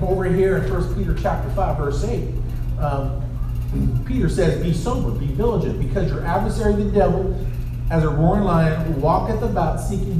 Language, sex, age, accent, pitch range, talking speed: English, male, 40-59, American, 120-160 Hz, 165 wpm